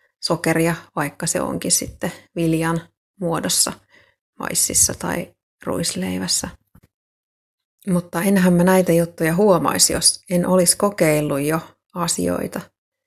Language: Finnish